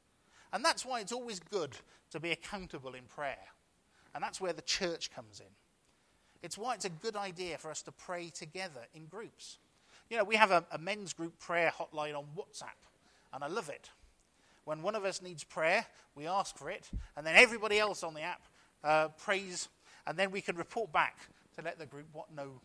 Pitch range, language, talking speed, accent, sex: 145-185 Hz, English, 205 wpm, British, male